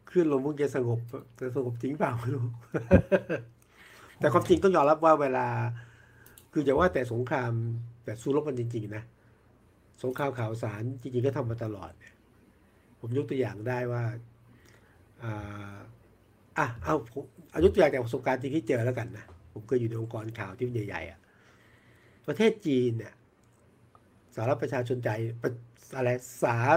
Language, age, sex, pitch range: Thai, 60-79, male, 115-150 Hz